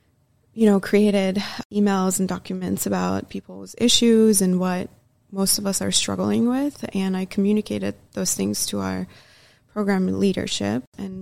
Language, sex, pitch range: English, female, 185-210 Hz